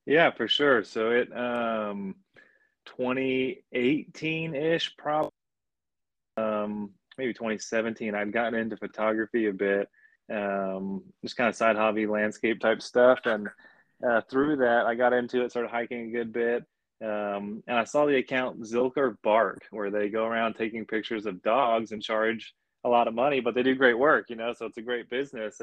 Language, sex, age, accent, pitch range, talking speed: English, male, 20-39, American, 110-125 Hz, 175 wpm